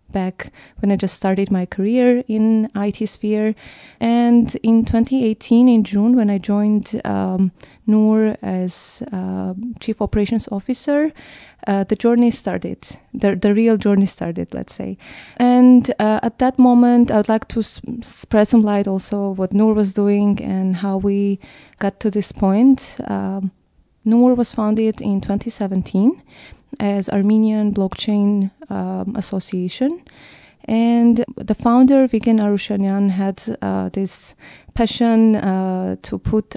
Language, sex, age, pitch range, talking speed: English, female, 20-39, 195-225 Hz, 135 wpm